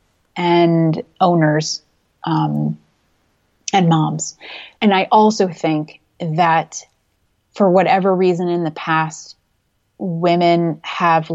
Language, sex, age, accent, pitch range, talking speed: English, female, 30-49, American, 160-180 Hz, 95 wpm